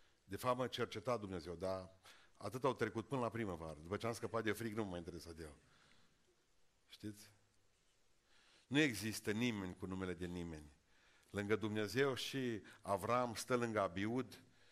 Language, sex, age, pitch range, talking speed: Romanian, male, 50-69, 95-115 Hz, 165 wpm